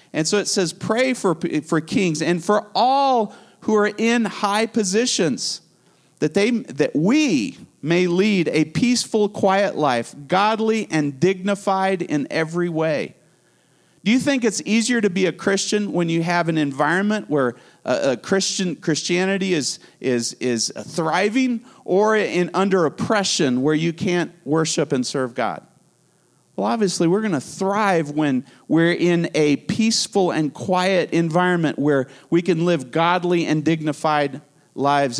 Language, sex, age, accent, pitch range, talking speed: English, male, 40-59, American, 165-210 Hz, 150 wpm